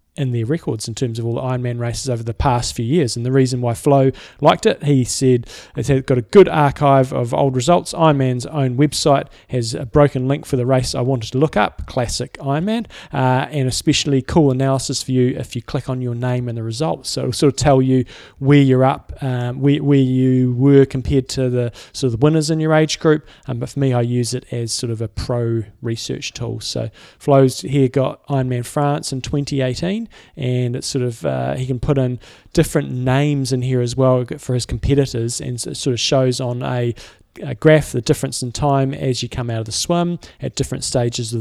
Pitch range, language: 120-140 Hz, English